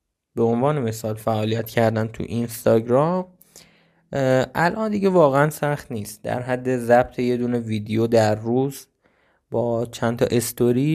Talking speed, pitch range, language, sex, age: 125 wpm, 110-135 Hz, Persian, male, 20-39